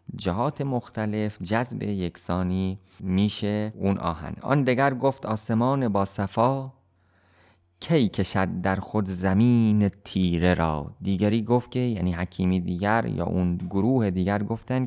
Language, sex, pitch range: Persian, male, 90-115 Hz